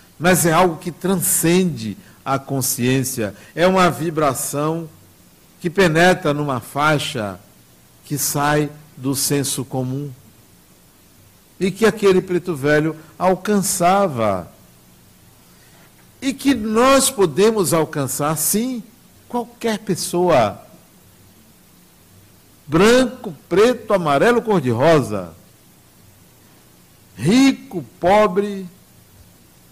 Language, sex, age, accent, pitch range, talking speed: Portuguese, male, 60-79, Brazilian, 115-190 Hz, 80 wpm